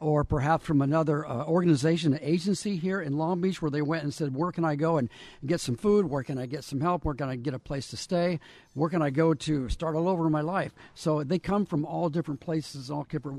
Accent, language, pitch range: American, English, 140-165 Hz